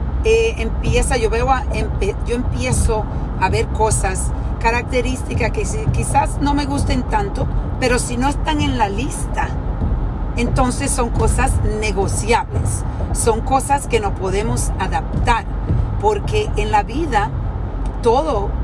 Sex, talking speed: female, 130 wpm